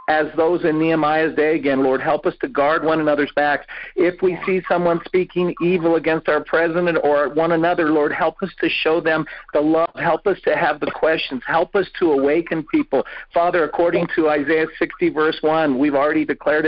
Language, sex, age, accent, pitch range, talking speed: English, male, 50-69, American, 155-180 Hz, 200 wpm